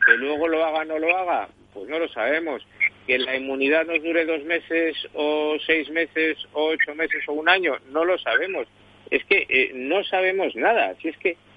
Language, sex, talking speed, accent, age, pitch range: Spanish, male, 205 wpm, Spanish, 50-69, 140-185 Hz